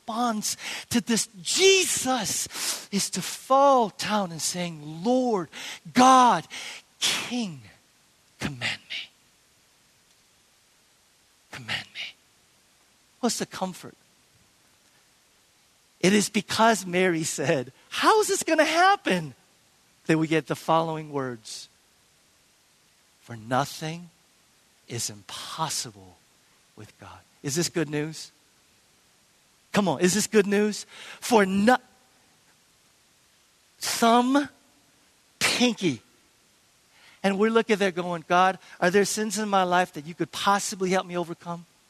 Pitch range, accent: 150-215 Hz, American